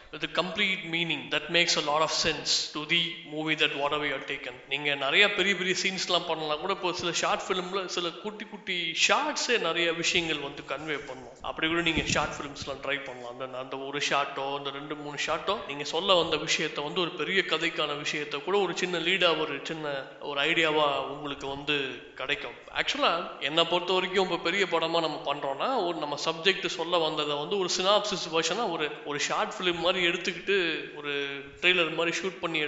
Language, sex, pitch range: Thai, male, 150-175 Hz